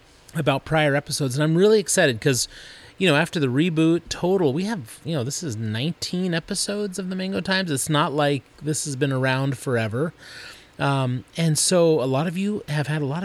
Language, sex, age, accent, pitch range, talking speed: English, male, 30-49, American, 120-165 Hz, 205 wpm